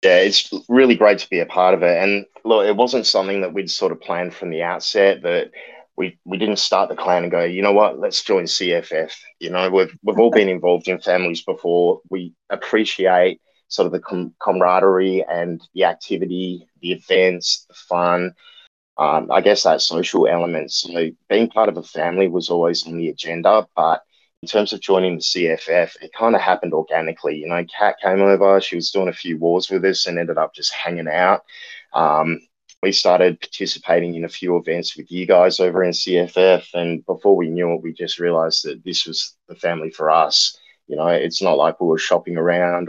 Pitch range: 85-100 Hz